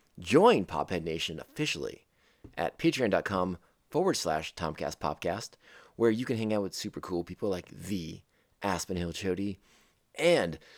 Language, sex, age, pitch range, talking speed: English, male, 30-49, 95-140 Hz, 135 wpm